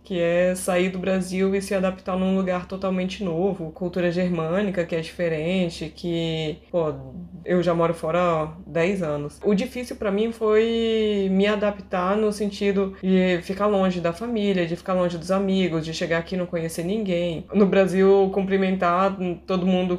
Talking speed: 170 wpm